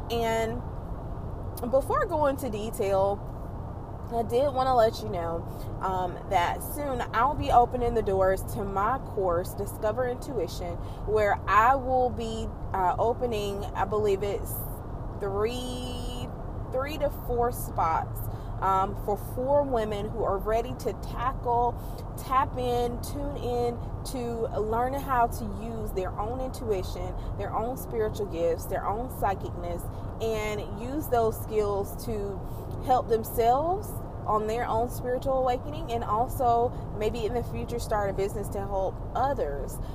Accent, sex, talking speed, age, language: American, female, 135 wpm, 20-39, English